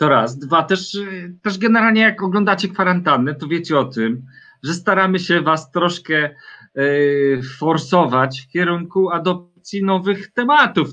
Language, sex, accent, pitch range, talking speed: Polish, male, native, 130-190 Hz, 135 wpm